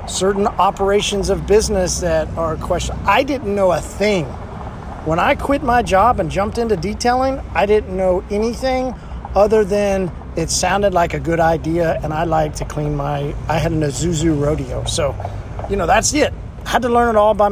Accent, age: American, 40-59